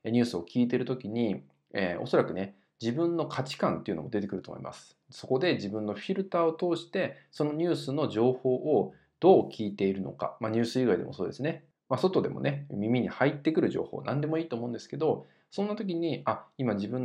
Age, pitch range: 20-39, 105-165 Hz